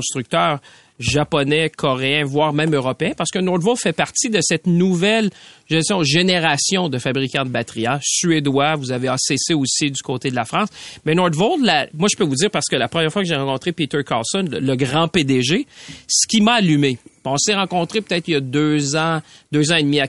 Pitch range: 135-180 Hz